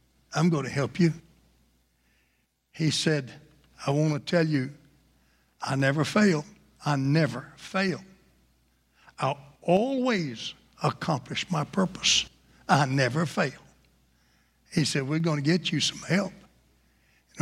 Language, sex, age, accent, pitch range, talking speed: English, male, 60-79, American, 125-175 Hz, 125 wpm